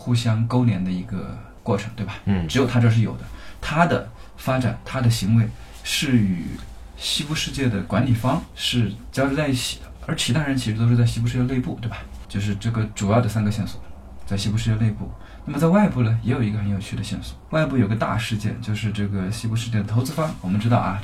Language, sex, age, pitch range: Chinese, male, 20-39, 105-125 Hz